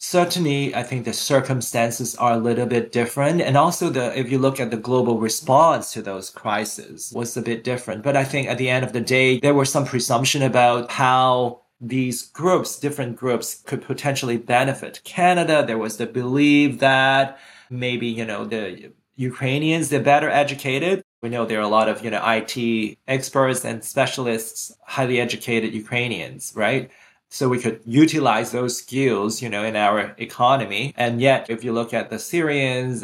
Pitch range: 115-140 Hz